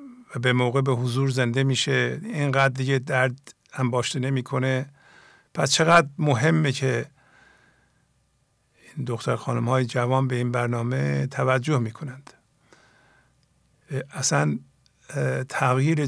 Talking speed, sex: 110 wpm, male